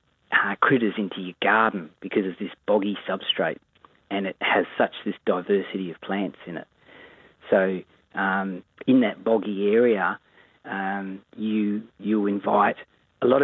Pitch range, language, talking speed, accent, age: 95-110 Hz, English, 145 wpm, Australian, 40-59